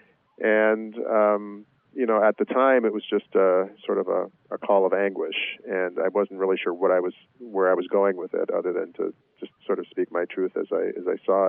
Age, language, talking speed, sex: 40-59, English, 240 wpm, male